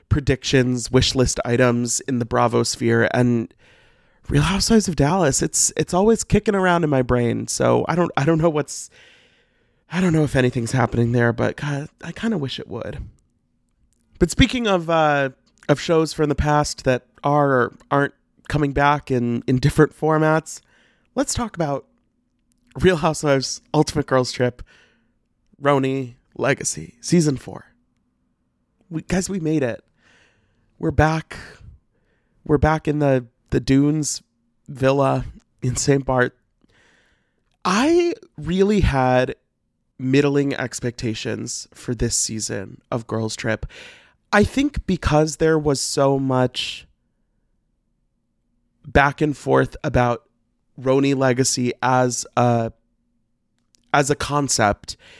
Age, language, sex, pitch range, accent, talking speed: 30-49, English, male, 120-155 Hz, American, 130 wpm